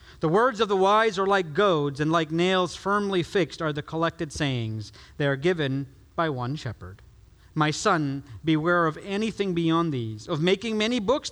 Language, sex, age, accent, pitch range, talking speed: English, male, 40-59, American, 140-210 Hz, 180 wpm